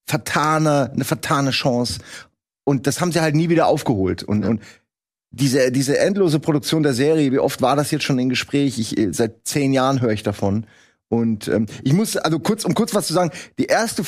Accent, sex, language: German, male, German